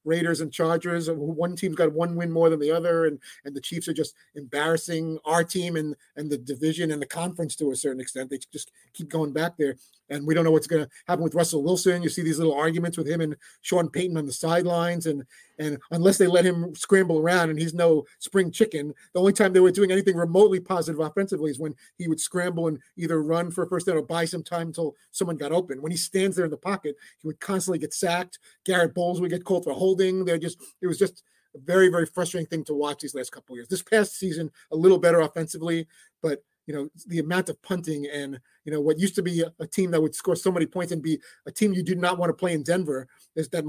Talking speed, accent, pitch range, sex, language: 255 wpm, American, 155-180 Hz, male, English